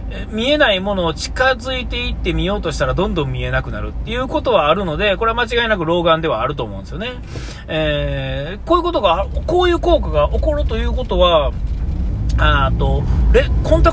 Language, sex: Japanese, male